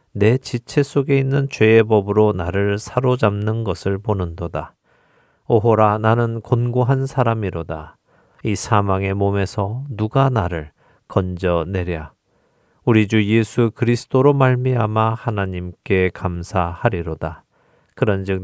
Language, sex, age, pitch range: Korean, male, 40-59, 95-125 Hz